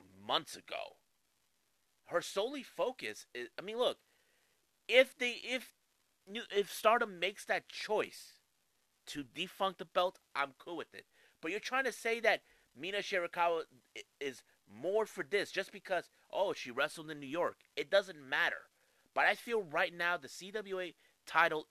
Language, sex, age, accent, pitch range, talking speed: English, male, 30-49, American, 160-265 Hz, 155 wpm